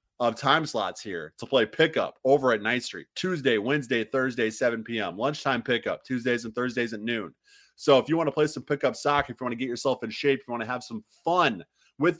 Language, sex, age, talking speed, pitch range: English, male, 30-49, 235 wpm, 110-140 Hz